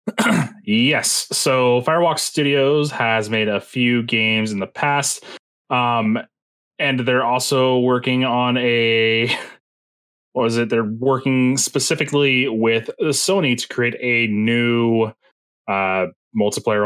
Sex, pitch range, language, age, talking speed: male, 105-125 Hz, English, 20-39, 115 wpm